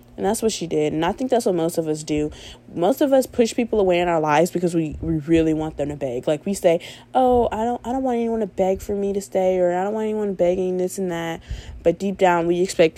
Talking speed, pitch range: 280 wpm, 150-195 Hz